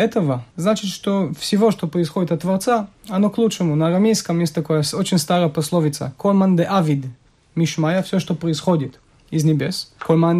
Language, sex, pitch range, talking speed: Russian, male, 165-215 Hz, 160 wpm